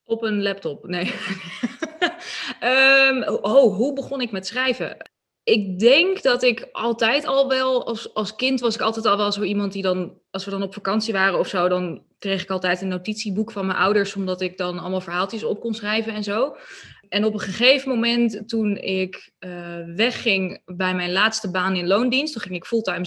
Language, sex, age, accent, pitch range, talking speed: Dutch, female, 20-39, Dutch, 185-230 Hz, 195 wpm